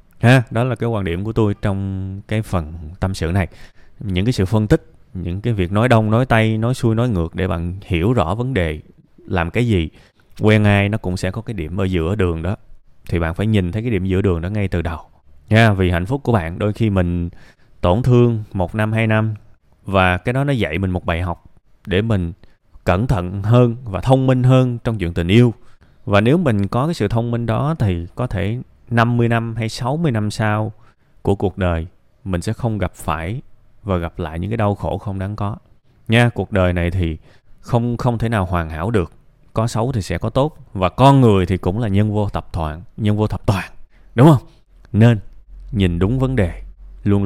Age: 20-39